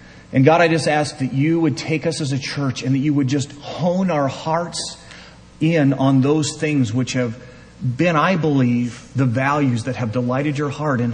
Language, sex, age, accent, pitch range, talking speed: English, male, 40-59, American, 130-165 Hz, 205 wpm